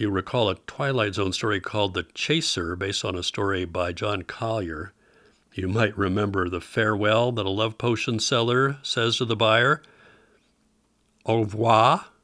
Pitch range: 95-120 Hz